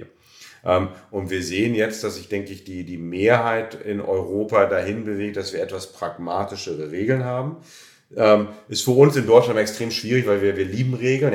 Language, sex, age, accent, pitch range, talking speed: German, male, 40-59, German, 100-120 Hz, 175 wpm